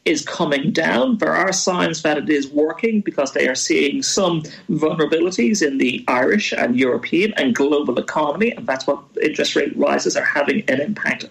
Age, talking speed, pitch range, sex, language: 40-59, 180 wpm, 160-225 Hz, male, English